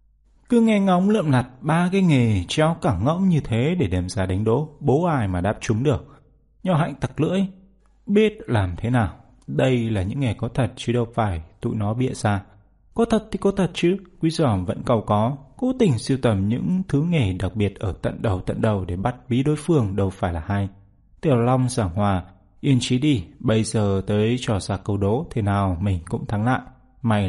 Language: Vietnamese